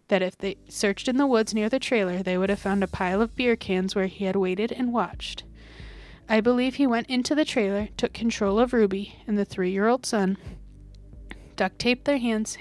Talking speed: 205 wpm